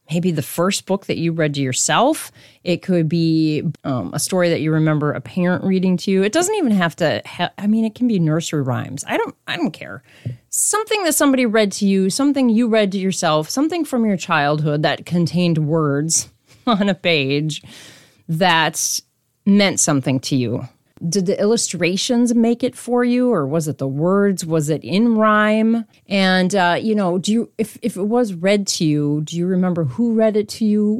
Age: 30-49